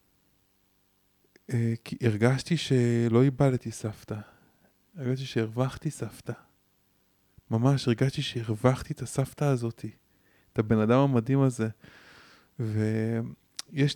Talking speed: 85 wpm